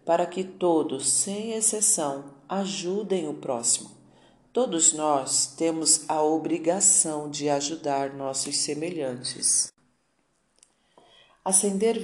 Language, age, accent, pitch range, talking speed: Portuguese, 40-59, Brazilian, 145-175 Hz, 90 wpm